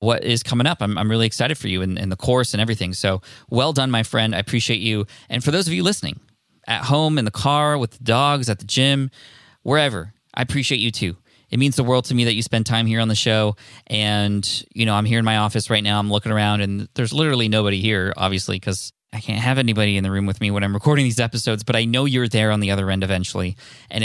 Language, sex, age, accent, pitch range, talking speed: English, male, 20-39, American, 100-125 Hz, 260 wpm